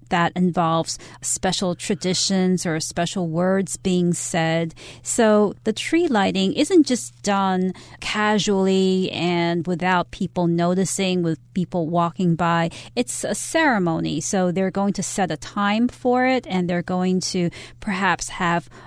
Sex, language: female, Chinese